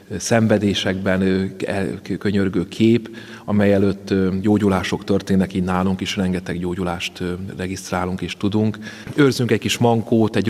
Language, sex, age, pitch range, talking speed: Hungarian, male, 30-49, 95-105 Hz, 115 wpm